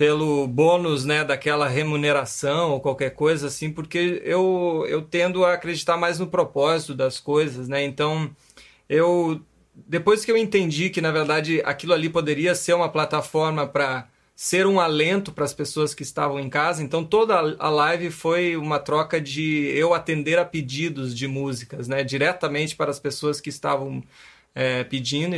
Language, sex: Portuguese, male